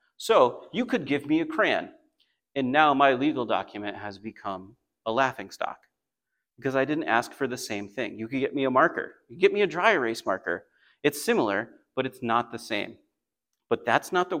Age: 40-59